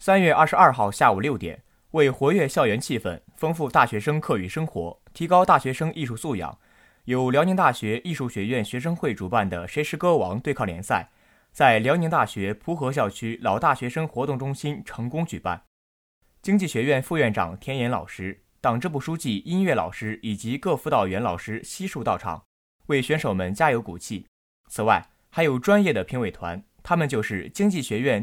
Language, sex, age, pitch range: Chinese, male, 20-39, 105-160 Hz